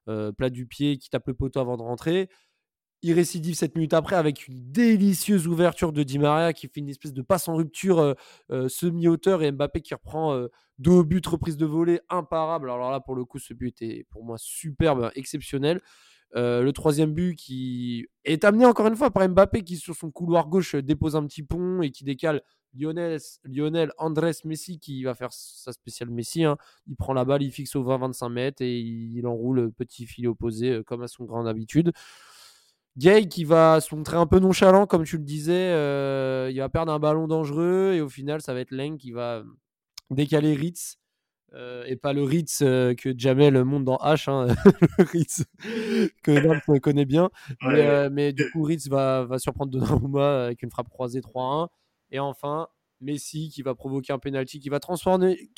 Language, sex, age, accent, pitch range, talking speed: French, male, 20-39, French, 130-165 Hz, 200 wpm